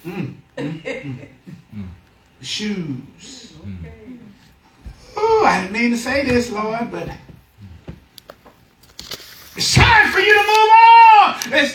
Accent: American